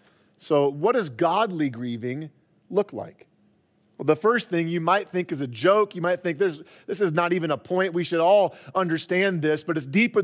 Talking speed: 205 wpm